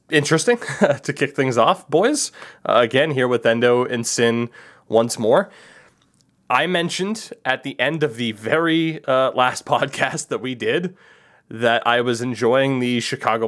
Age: 20-39